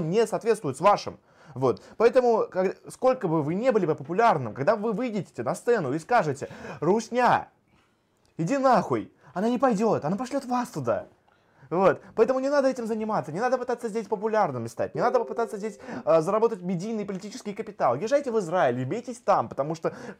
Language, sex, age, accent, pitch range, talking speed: Russian, male, 20-39, native, 150-225 Hz, 170 wpm